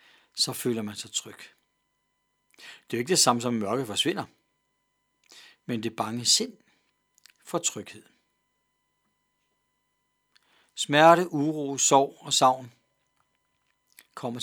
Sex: male